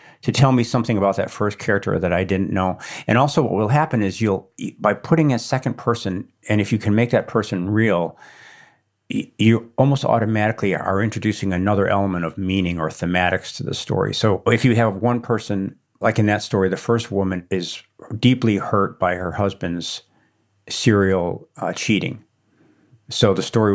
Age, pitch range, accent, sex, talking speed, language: 50-69, 95-120 Hz, American, male, 180 wpm, English